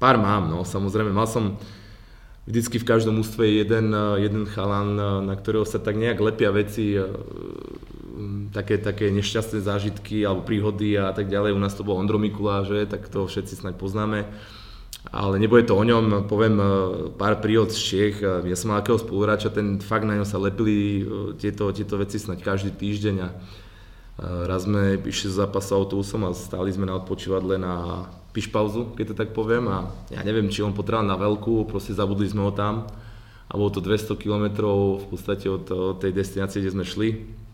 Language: Slovak